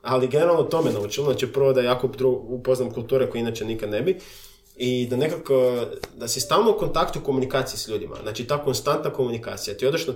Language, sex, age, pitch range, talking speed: Croatian, male, 20-39, 120-150 Hz, 205 wpm